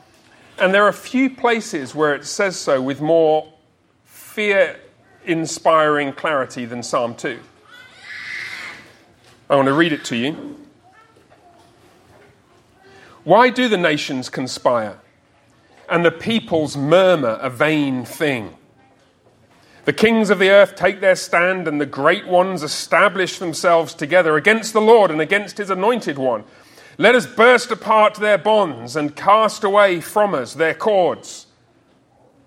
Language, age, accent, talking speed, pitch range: English, 40-59, British, 130 wpm, 145-200 Hz